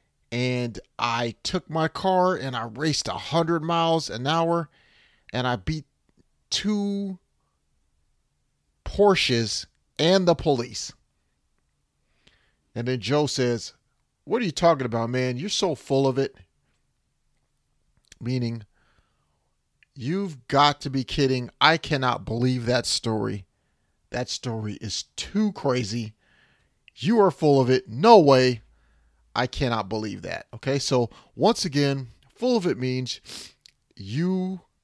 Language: English